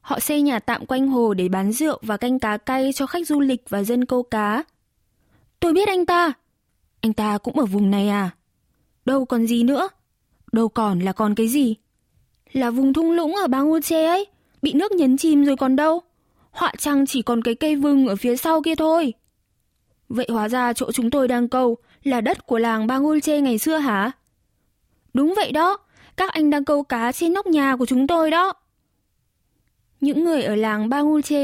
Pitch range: 230-295 Hz